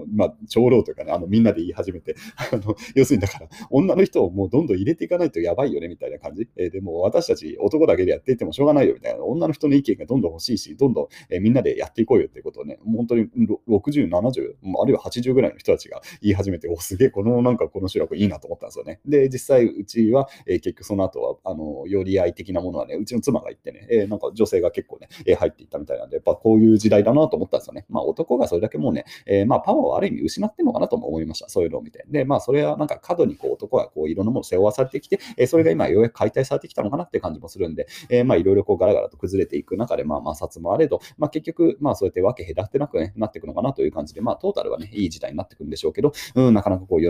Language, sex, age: Japanese, male, 30-49